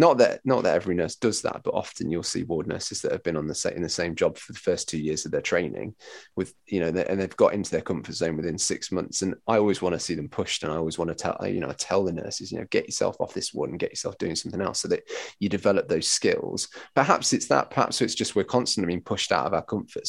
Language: English